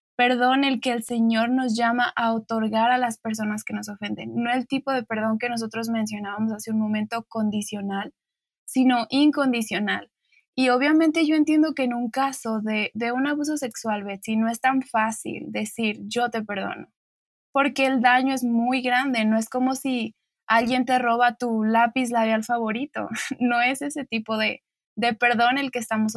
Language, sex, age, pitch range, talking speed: Spanish, female, 20-39, 220-255 Hz, 180 wpm